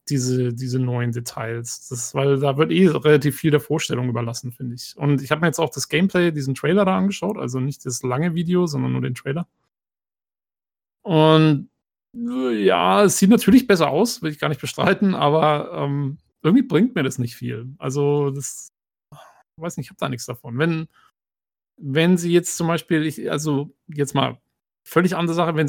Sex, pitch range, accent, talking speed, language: male, 140-175 Hz, German, 190 wpm, German